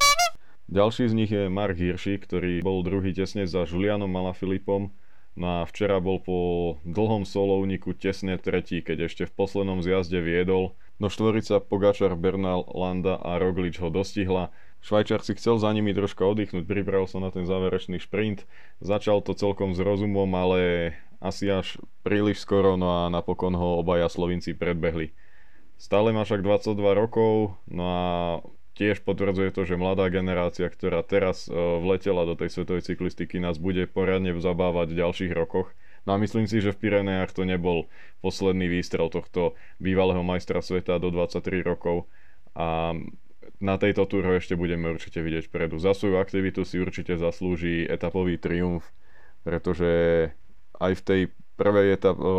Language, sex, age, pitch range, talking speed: Slovak, male, 20-39, 90-100 Hz, 155 wpm